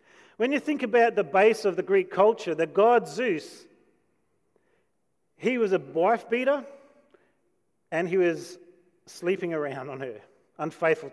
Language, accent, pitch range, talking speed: English, Australian, 165-230 Hz, 135 wpm